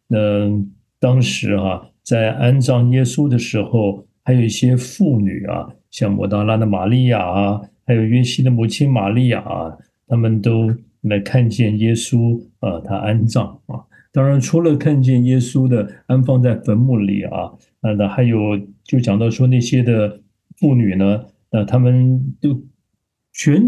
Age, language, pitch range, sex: 50-69, Chinese, 105-130 Hz, male